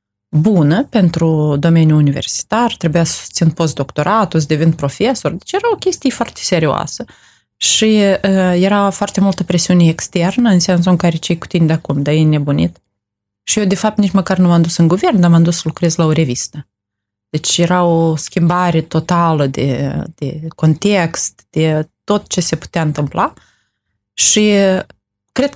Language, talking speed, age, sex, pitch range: Romanian, 170 wpm, 20-39, female, 150-195 Hz